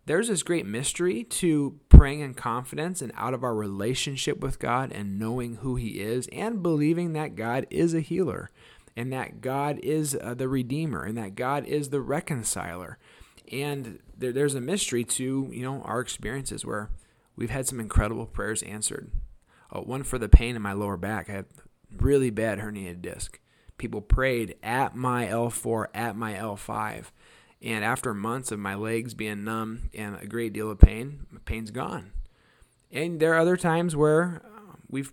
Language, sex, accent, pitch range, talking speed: English, male, American, 110-140 Hz, 180 wpm